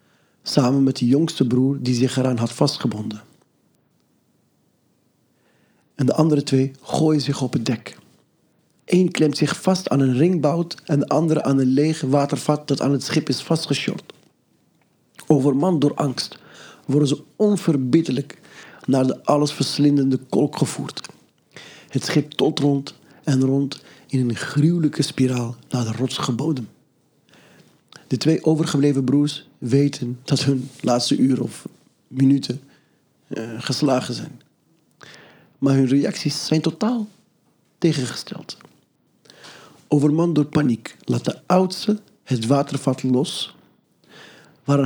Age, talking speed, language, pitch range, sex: 40-59, 125 wpm, Dutch, 130-160 Hz, male